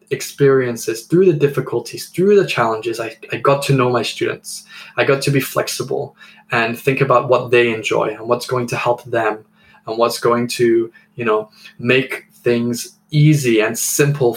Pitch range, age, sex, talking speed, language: 120-150 Hz, 10-29, male, 175 wpm, English